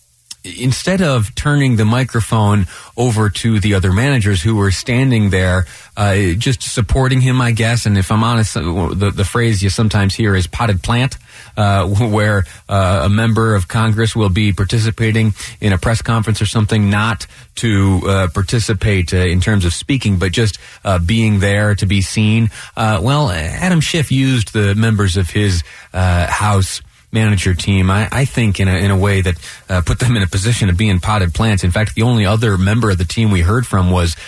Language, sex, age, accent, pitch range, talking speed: English, male, 30-49, American, 100-125 Hz, 195 wpm